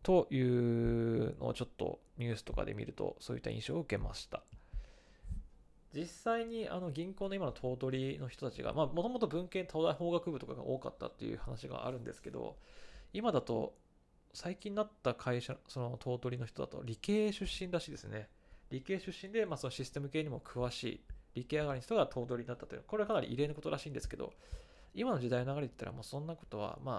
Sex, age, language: male, 20-39, Japanese